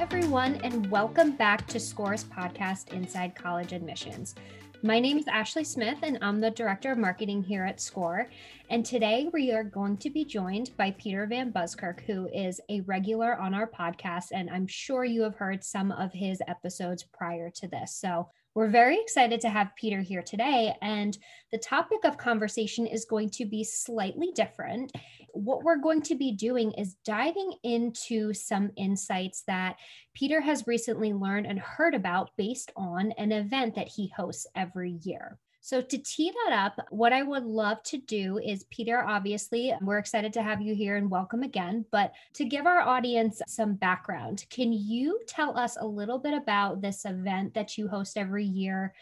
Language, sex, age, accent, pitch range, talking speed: English, female, 20-39, American, 195-240 Hz, 180 wpm